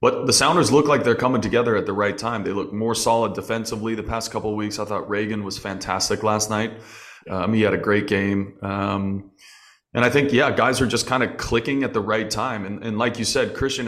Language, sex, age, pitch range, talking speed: English, male, 20-39, 105-120 Hz, 240 wpm